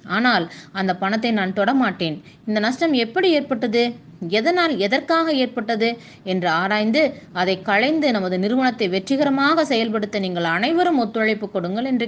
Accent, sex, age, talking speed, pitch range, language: native, female, 20-39, 125 wpm, 195-260 Hz, Tamil